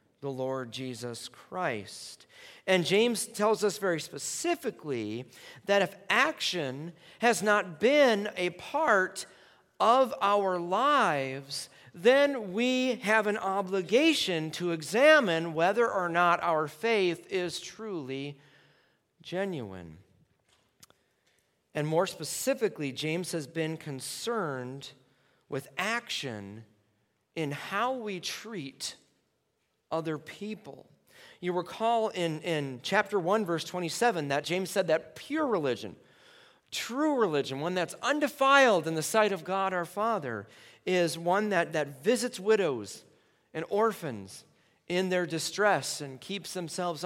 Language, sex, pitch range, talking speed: English, male, 155-215 Hz, 115 wpm